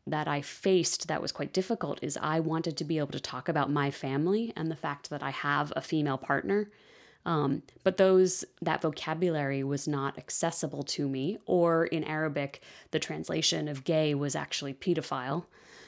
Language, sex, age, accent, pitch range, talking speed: English, female, 20-39, American, 150-175 Hz, 180 wpm